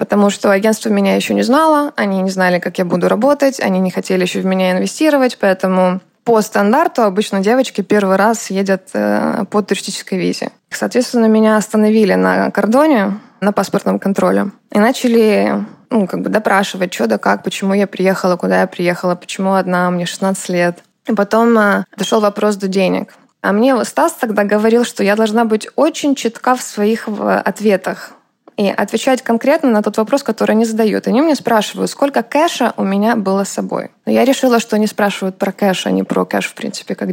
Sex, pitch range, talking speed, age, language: female, 195-245 Hz, 185 wpm, 20-39, Russian